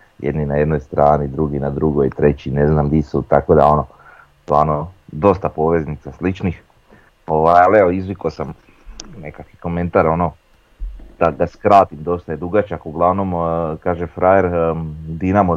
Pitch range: 80-95 Hz